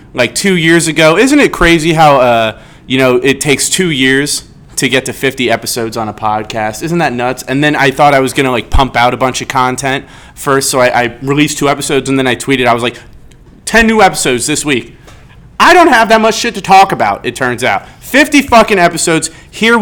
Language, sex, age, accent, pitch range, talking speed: English, male, 30-49, American, 130-185 Hz, 225 wpm